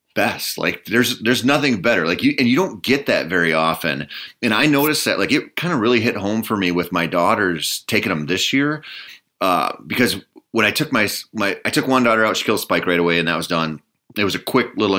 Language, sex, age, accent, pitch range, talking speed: English, male, 30-49, American, 85-110 Hz, 245 wpm